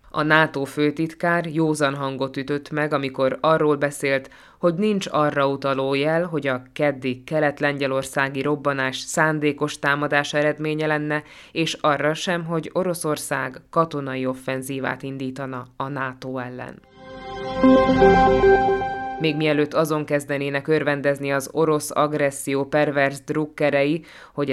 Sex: female